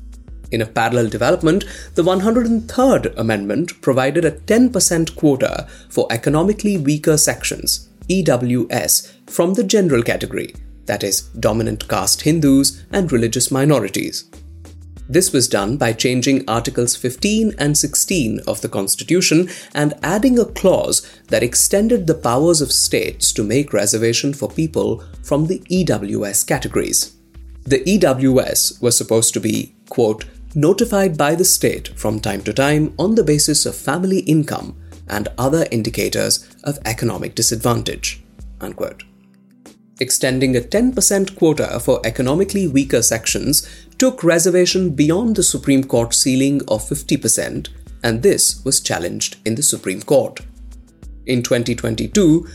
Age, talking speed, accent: 30-49, 130 wpm, Indian